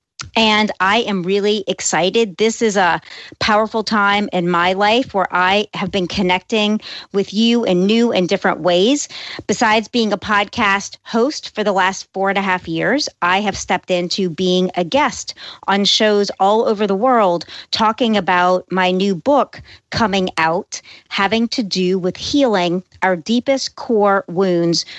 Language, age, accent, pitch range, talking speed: English, 40-59, American, 180-215 Hz, 160 wpm